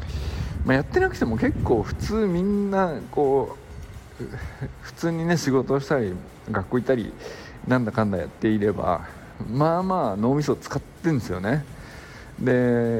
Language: Japanese